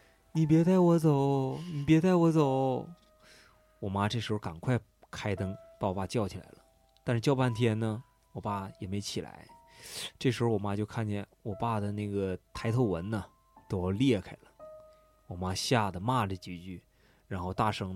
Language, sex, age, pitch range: Chinese, male, 20-39, 100-130 Hz